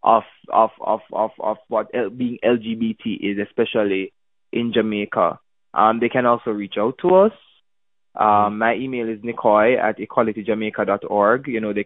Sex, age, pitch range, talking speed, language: male, 20-39, 105-125 Hz, 150 wpm, English